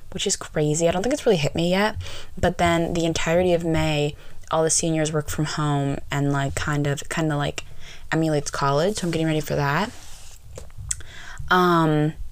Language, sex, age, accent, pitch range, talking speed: English, female, 10-29, American, 150-200 Hz, 190 wpm